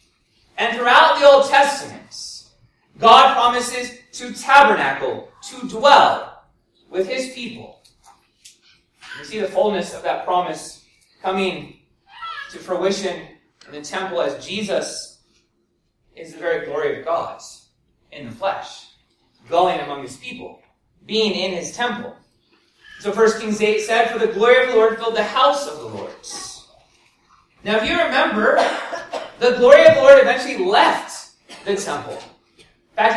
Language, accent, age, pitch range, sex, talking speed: English, American, 30-49, 215-280 Hz, male, 140 wpm